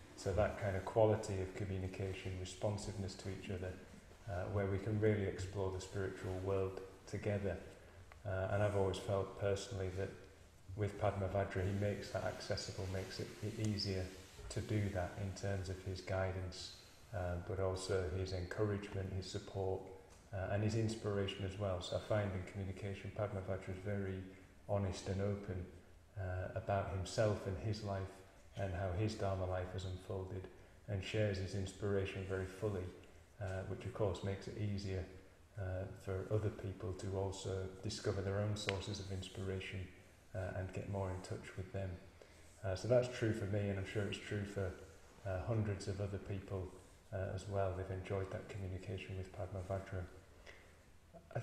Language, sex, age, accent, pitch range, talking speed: English, male, 30-49, British, 95-100 Hz, 170 wpm